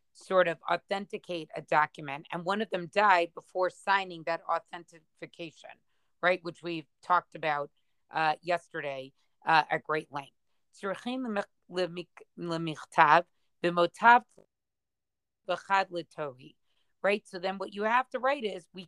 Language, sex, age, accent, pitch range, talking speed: English, female, 40-59, American, 170-215 Hz, 110 wpm